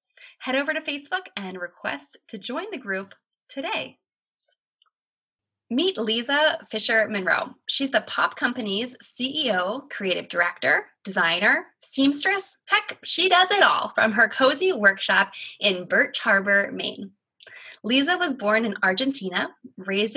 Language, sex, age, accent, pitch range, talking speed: English, female, 20-39, American, 200-290 Hz, 125 wpm